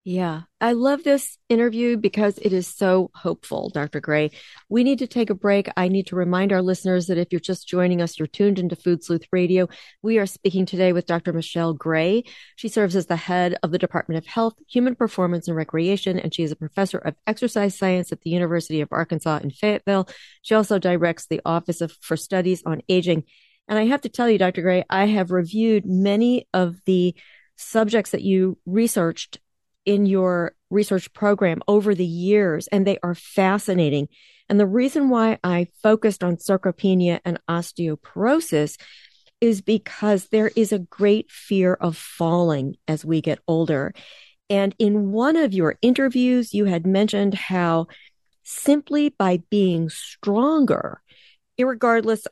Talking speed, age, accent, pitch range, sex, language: 170 wpm, 40-59, American, 170-215 Hz, female, English